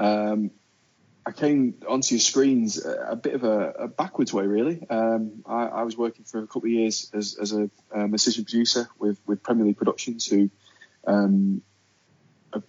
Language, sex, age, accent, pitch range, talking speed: English, male, 20-39, British, 105-120 Hz, 185 wpm